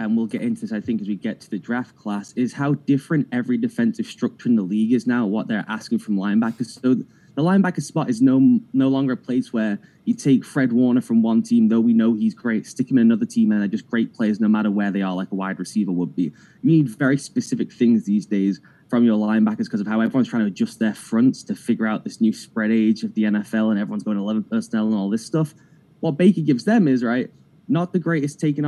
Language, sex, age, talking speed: English, male, 10-29, 255 wpm